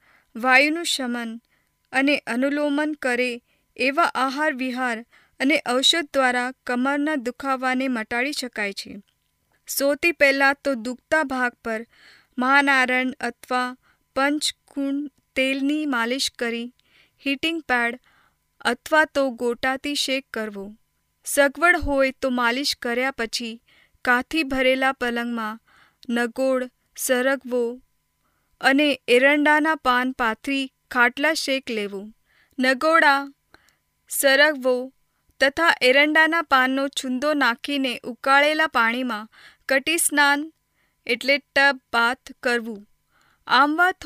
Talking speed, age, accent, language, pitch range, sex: 90 wpm, 20-39, native, Hindi, 245-290 Hz, female